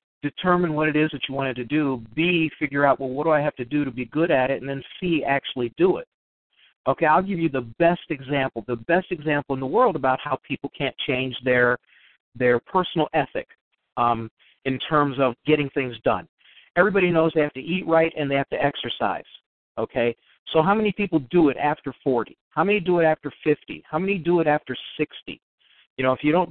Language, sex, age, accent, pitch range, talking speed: English, male, 50-69, American, 135-165 Hz, 220 wpm